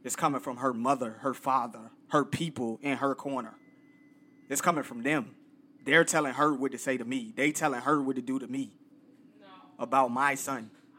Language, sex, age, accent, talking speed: English, male, 20-39, American, 190 wpm